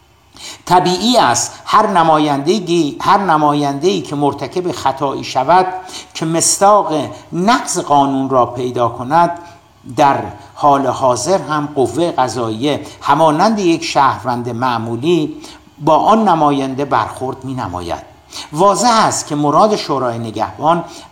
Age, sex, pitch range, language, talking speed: 60-79, male, 125-165 Hz, Persian, 110 wpm